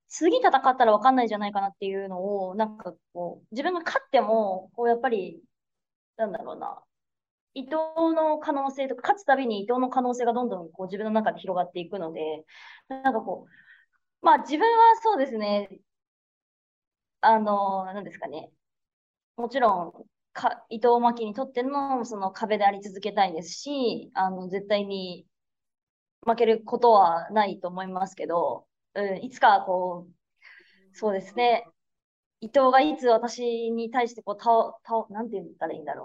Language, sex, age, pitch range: English, female, 20-39, 195-250 Hz